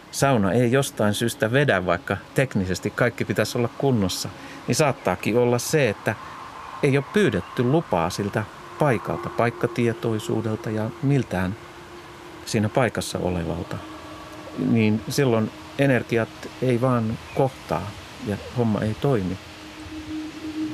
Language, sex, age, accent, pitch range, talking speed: Finnish, male, 50-69, native, 100-135 Hz, 110 wpm